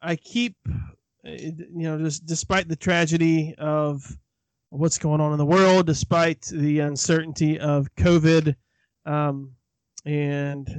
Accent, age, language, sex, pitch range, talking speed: American, 20-39, English, male, 145-165 Hz, 120 wpm